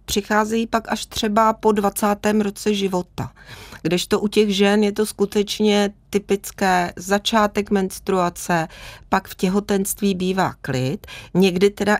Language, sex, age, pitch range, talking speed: Czech, female, 30-49, 180-205 Hz, 125 wpm